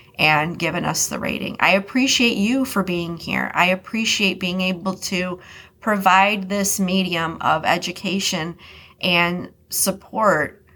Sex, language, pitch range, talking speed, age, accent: female, English, 175-235 Hz, 130 wpm, 30-49, American